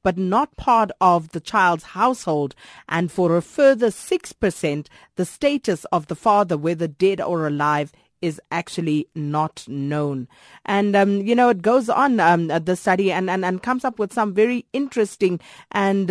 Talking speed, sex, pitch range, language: 170 wpm, female, 165-215 Hz, English